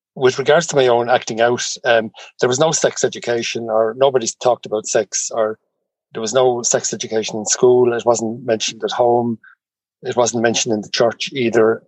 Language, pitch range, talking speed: English, 115-130 Hz, 190 wpm